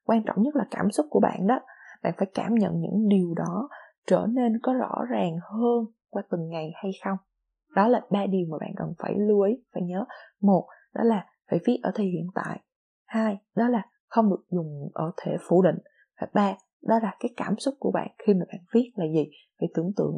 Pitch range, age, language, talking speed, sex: 180-240 Hz, 20-39, Vietnamese, 225 wpm, female